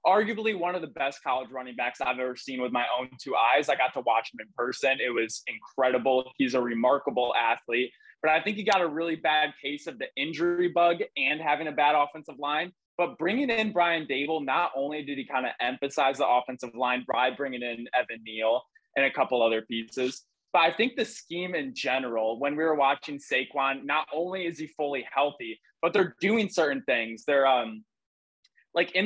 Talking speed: 210 wpm